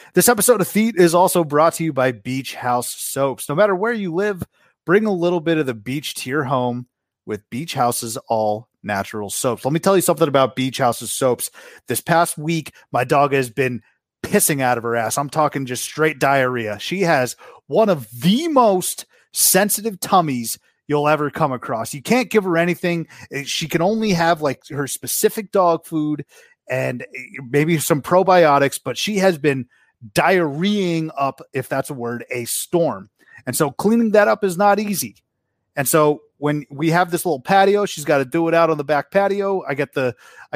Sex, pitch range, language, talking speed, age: male, 130-180 Hz, English, 190 wpm, 30-49